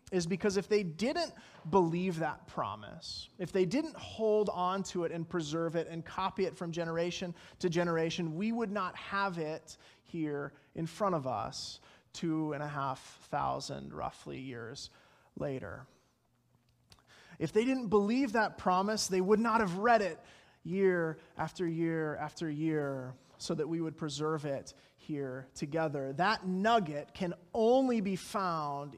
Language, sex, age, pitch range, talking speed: English, male, 30-49, 160-205 Hz, 155 wpm